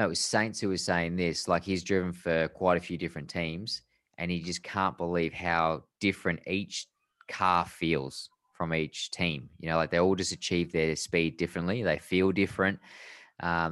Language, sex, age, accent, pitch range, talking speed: English, male, 20-39, Australian, 80-90 Hz, 190 wpm